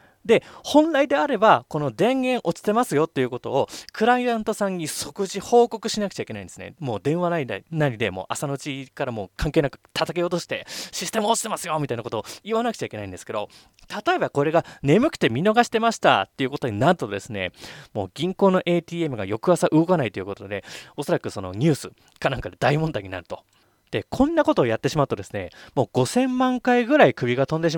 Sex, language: male, Japanese